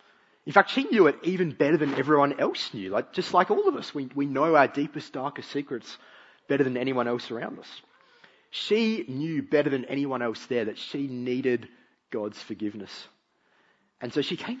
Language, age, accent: English, 30-49, Australian